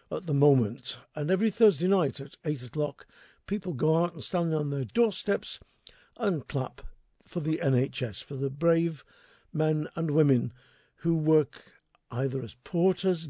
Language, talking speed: English, 155 wpm